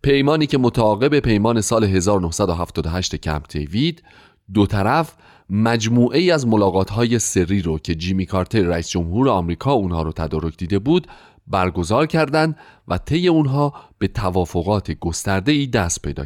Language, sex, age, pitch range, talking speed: Persian, male, 30-49, 90-125 Hz, 145 wpm